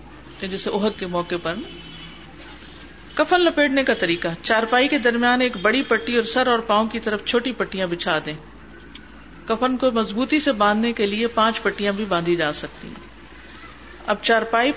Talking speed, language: 165 wpm, Urdu